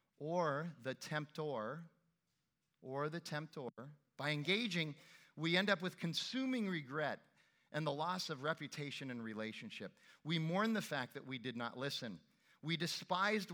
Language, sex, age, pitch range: English, male, 40-59, 135-165 Hz